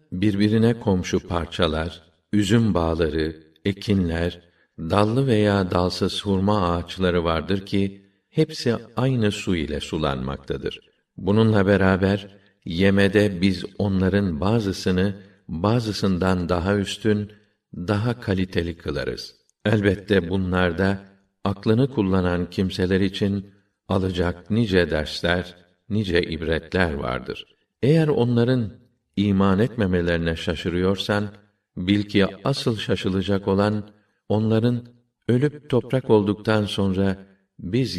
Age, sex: 50-69, male